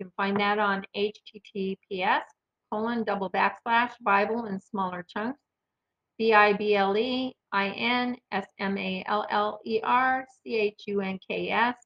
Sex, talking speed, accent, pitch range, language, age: female, 60 wpm, American, 200-225 Hz, English, 50-69